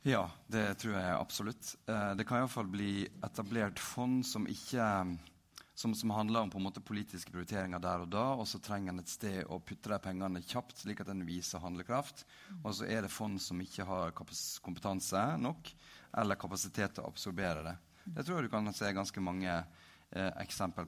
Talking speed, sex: 195 wpm, male